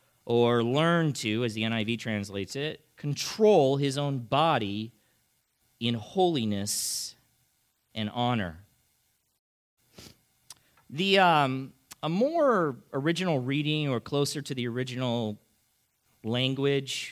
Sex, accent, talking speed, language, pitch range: male, American, 100 wpm, English, 115-140 Hz